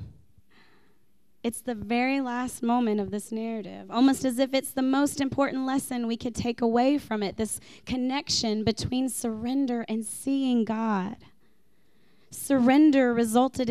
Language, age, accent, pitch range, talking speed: English, 20-39, American, 225-265 Hz, 135 wpm